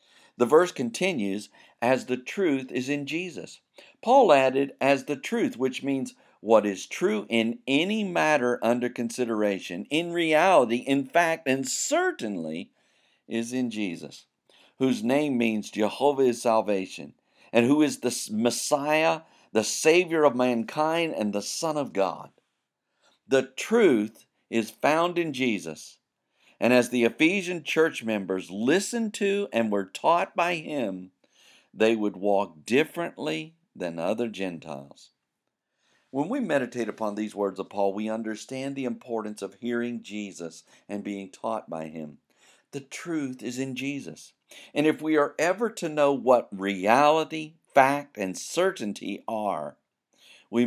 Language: English